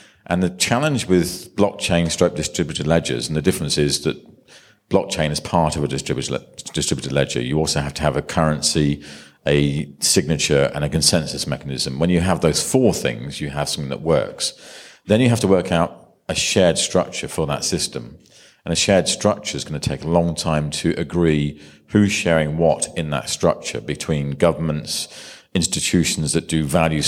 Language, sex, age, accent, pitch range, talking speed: English, male, 40-59, British, 75-90 Hz, 180 wpm